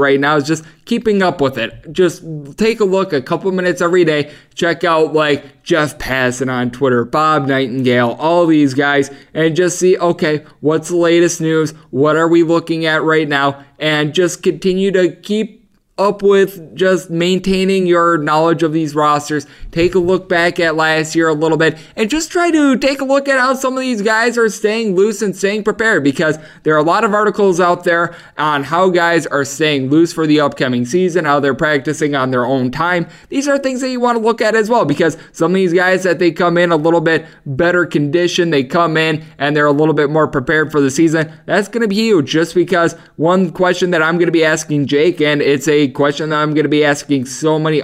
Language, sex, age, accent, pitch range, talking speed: English, male, 20-39, American, 150-180 Hz, 225 wpm